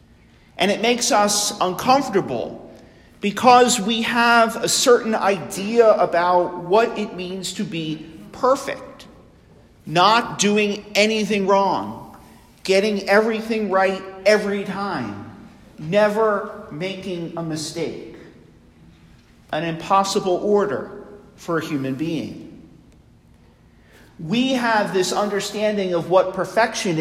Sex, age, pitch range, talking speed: male, 50-69, 180-220 Hz, 100 wpm